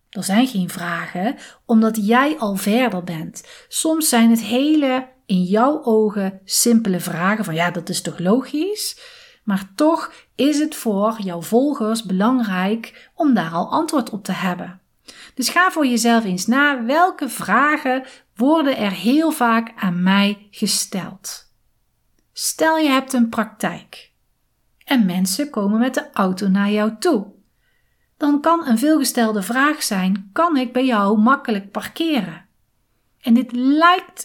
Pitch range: 200-290 Hz